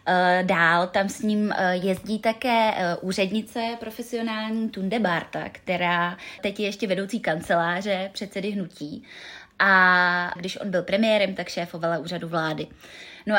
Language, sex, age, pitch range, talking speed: Czech, female, 20-39, 170-200 Hz, 125 wpm